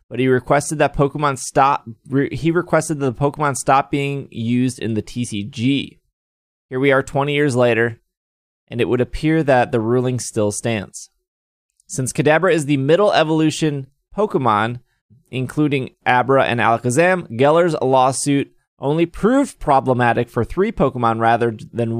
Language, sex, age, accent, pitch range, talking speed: English, male, 20-39, American, 115-155 Hz, 145 wpm